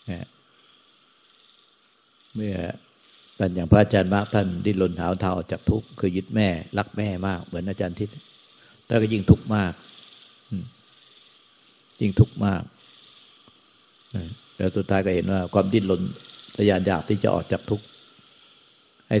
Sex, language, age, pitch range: male, Thai, 60-79, 95-110 Hz